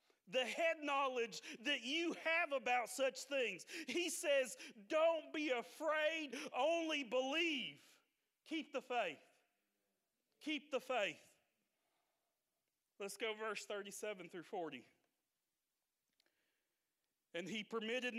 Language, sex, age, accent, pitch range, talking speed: English, male, 40-59, American, 190-250 Hz, 100 wpm